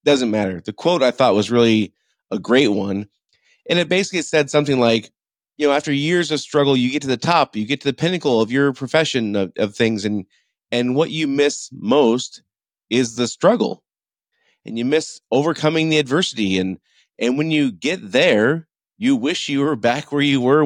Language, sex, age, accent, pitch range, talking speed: English, male, 30-49, American, 110-150 Hz, 200 wpm